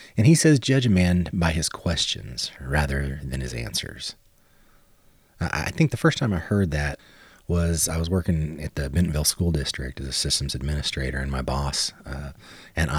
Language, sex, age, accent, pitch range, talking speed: English, male, 30-49, American, 75-100 Hz, 180 wpm